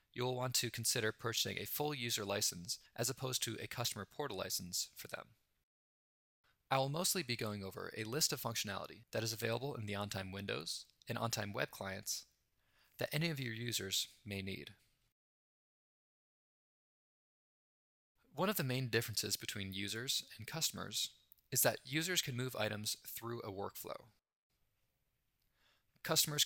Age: 20-39